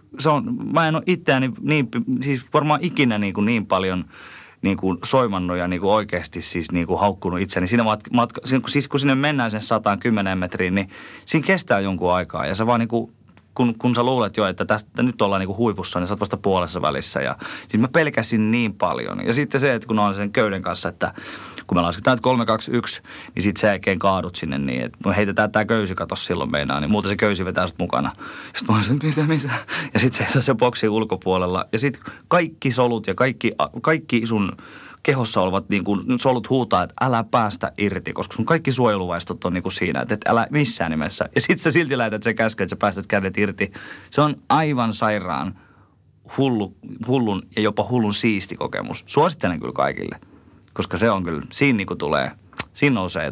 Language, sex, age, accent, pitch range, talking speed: Finnish, male, 30-49, native, 95-125 Hz, 210 wpm